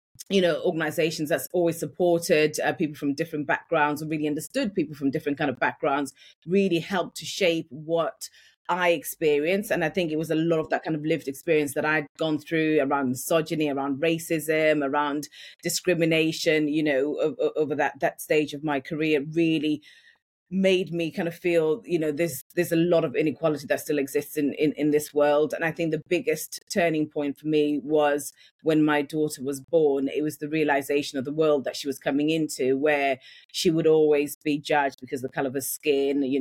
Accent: British